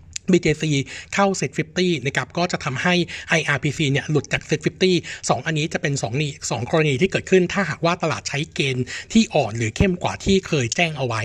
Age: 60-79